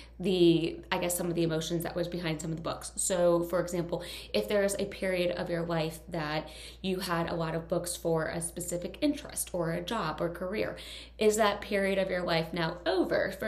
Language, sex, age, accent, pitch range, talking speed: English, female, 20-39, American, 170-210 Hz, 225 wpm